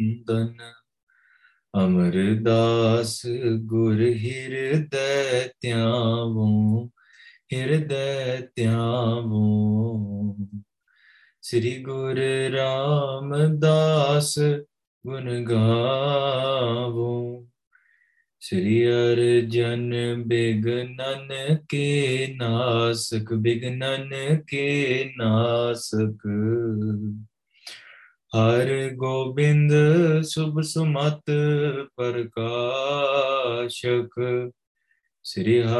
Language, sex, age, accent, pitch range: English, male, 20-39, Indian, 115-140 Hz